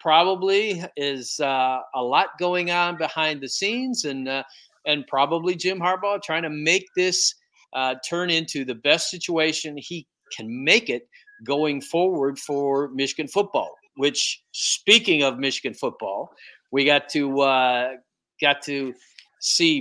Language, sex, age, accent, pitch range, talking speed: English, male, 50-69, American, 135-175 Hz, 140 wpm